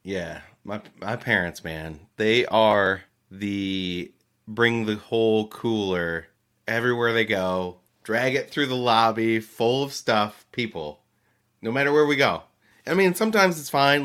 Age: 30-49